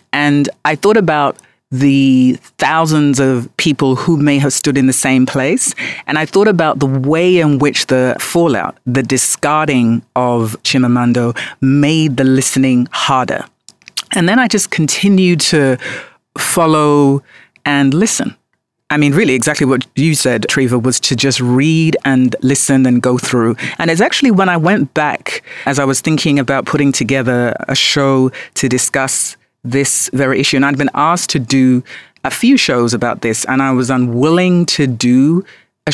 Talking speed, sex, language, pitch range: 165 wpm, female, English, 130-155 Hz